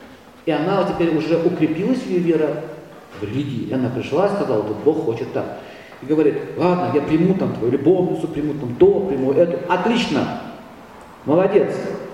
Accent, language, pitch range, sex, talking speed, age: native, Russian, 140-200 Hz, male, 170 wpm, 50-69